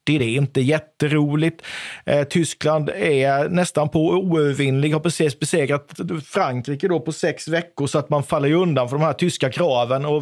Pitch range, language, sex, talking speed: 130-170 Hz, Swedish, male, 170 wpm